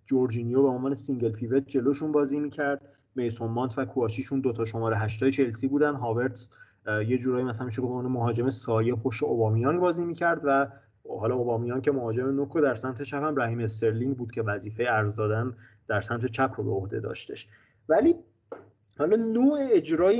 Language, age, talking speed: English, 30-49, 165 wpm